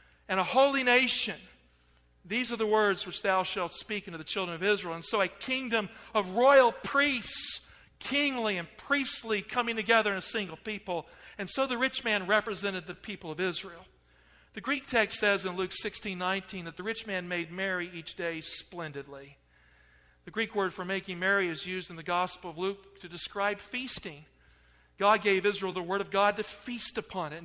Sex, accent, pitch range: male, American, 180-220 Hz